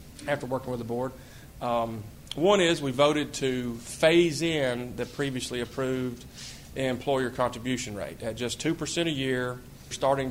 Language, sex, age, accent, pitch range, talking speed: English, male, 30-49, American, 115-130 Hz, 145 wpm